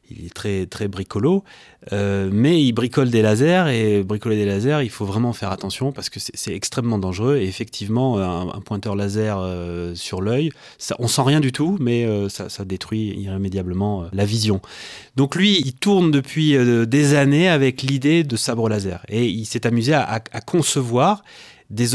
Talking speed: 185 wpm